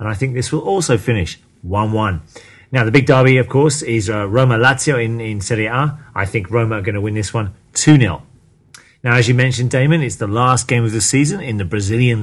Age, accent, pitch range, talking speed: 30-49, British, 110-130 Hz, 230 wpm